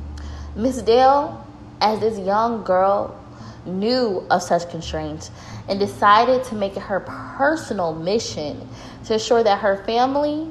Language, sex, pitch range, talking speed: English, female, 160-220 Hz, 130 wpm